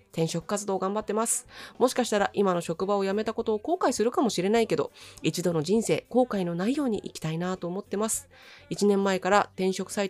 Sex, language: female, Japanese